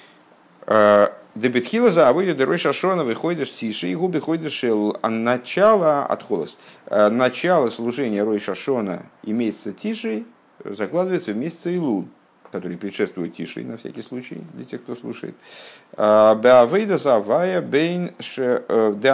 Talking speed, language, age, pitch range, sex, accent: 105 wpm, Russian, 50-69, 105-135 Hz, male, native